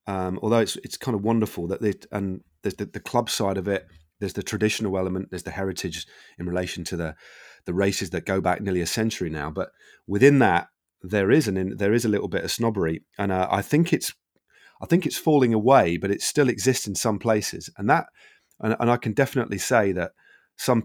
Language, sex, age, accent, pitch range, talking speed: English, male, 30-49, British, 95-120 Hz, 225 wpm